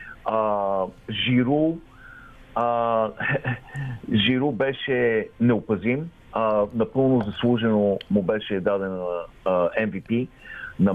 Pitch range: 110-135 Hz